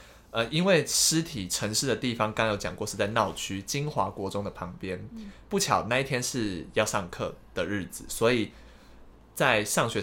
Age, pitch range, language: 20-39, 95-120 Hz, Chinese